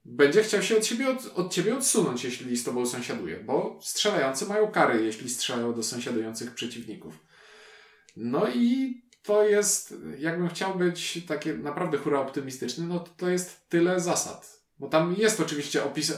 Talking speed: 160 wpm